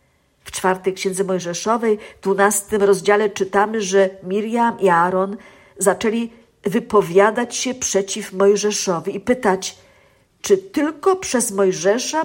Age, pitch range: 50-69, 190-225 Hz